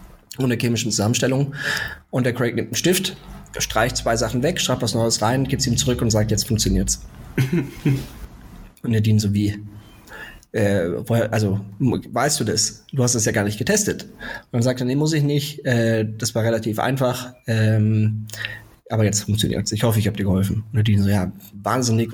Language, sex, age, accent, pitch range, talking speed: German, male, 20-39, German, 105-125 Hz, 190 wpm